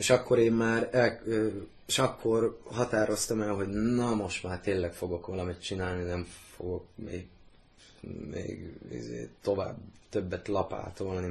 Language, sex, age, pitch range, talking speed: Hungarian, male, 20-39, 90-110 Hz, 125 wpm